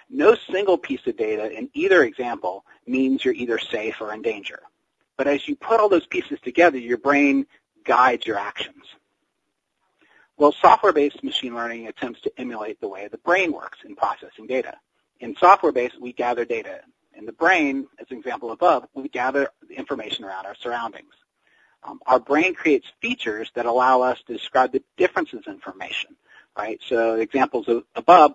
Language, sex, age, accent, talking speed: English, male, 40-59, American, 165 wpm